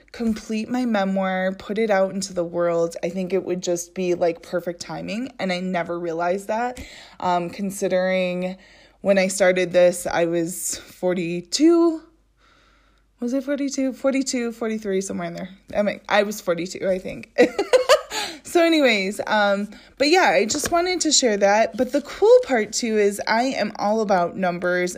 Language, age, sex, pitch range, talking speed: English, 20-39, female, 180-250 Hz, 165 wpm